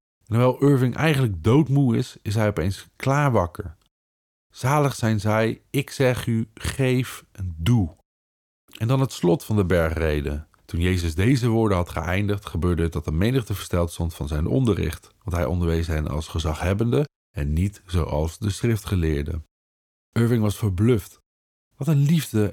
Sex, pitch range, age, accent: male, 85-125 Hz, 50-69, Dutch